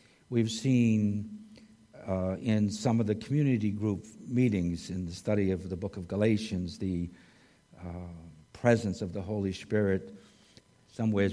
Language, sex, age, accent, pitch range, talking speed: English, male, 60-79, American, 95-110 Hz, 140 wpm